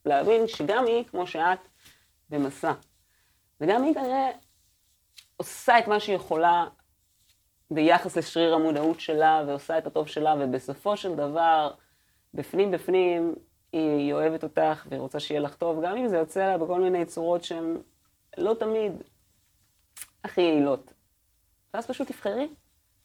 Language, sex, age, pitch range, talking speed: English, female, 30-49, 130-175 Hz, 125 wpm